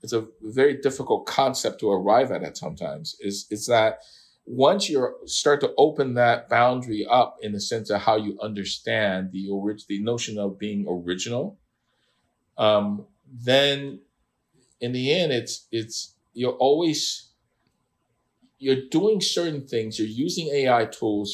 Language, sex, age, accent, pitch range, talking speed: English, male, 50-69, American, 105-135 Hz, 145 wpm